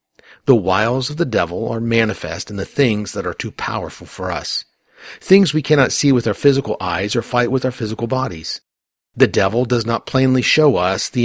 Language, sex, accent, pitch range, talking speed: English, male, American, 110-140 Hz, 205 wpm